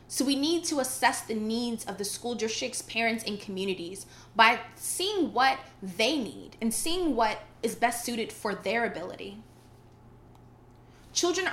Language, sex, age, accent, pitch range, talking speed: English, female, 20-39, American, 185-255 Hz, 150 wpm